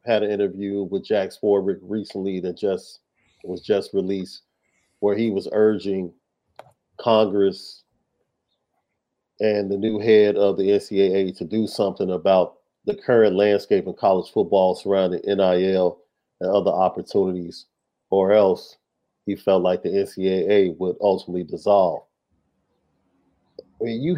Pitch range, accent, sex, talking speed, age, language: 100-130 Hz, American, male, 125 wpm, 40-59, English